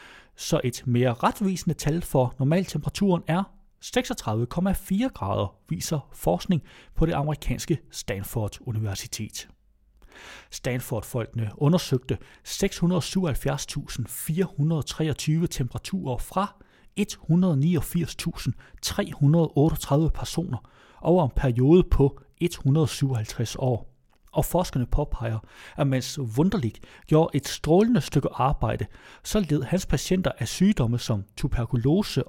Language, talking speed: Danish, 90 wpm